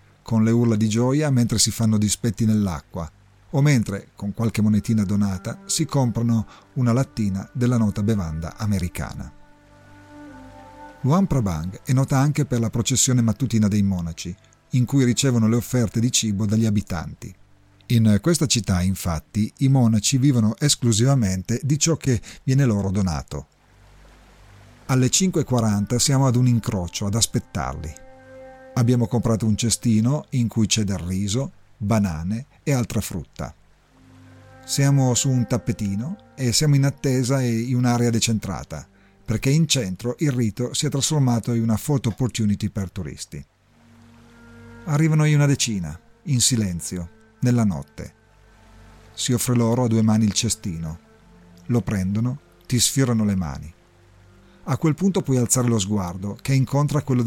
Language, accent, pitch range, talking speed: Italian, native, 100-125 Hz, 140 wpm